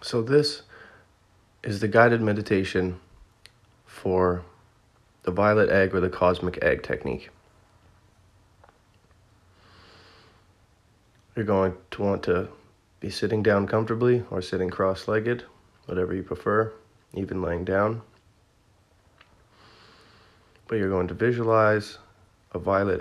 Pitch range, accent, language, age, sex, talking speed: 95-110 Hz, American, English, 30-49, male, 105 wpm